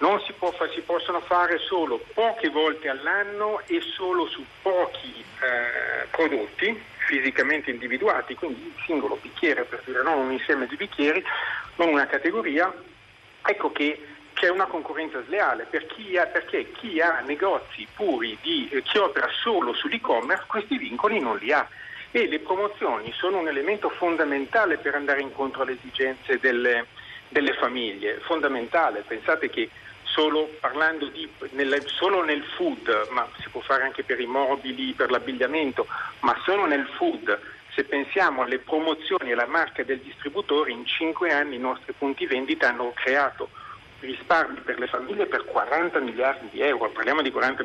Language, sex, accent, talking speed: Italian, male, native, 160 wpm